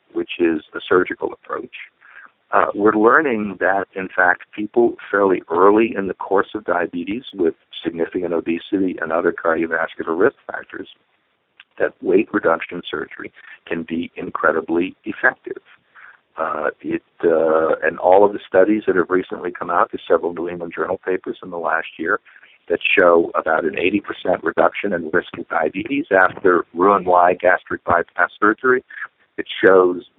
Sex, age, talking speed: male, 50-69, 150 wpm